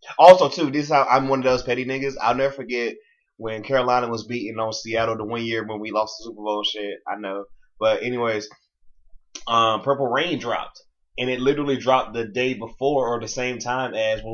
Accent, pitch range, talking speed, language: American, 115-190 Hz, 215 wpm, English